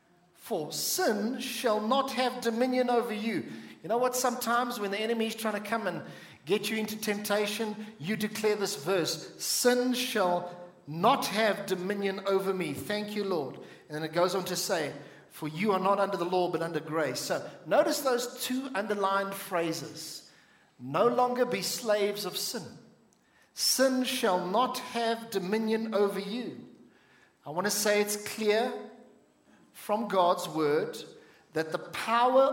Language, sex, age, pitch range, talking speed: English, male, 50-69, 175-225 Hz, 160 wpm